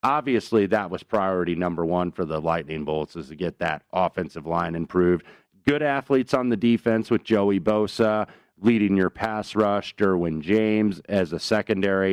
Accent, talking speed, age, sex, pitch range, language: American, 170 wpm, 40-59, male, 85-110 Hz, English